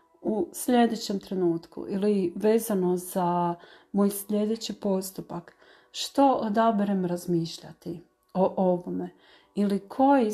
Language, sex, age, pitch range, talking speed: Croatian, female, 40-59, 180-220 Hz, 95 wpm